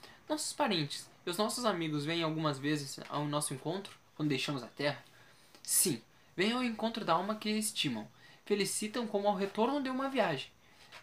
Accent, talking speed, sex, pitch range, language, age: Brazilian, 170 wpm, male, 145-205 Hz, Portuguese, 10-29